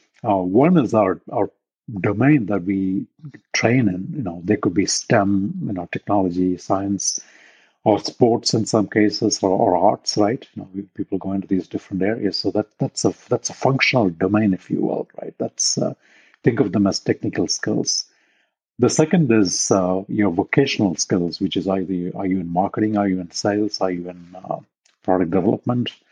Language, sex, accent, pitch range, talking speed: English, male, Indian, 95-115 Hz, 190 wpm